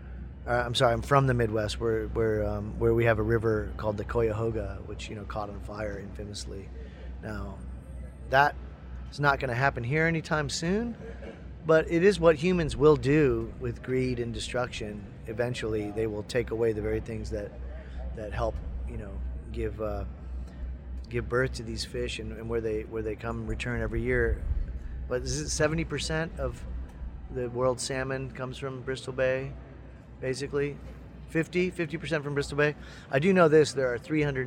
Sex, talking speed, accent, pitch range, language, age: male, 180 wpm, American, 105-135 Hz, English, 30-49